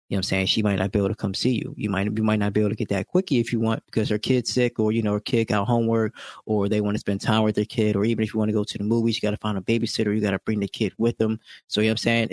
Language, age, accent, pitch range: English, 20-39, American, 100-120 Hz